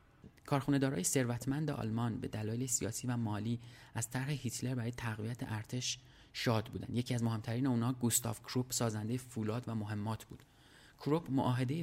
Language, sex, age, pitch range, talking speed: Persian, male, 30-49, 105-130 Hz, 150 wpm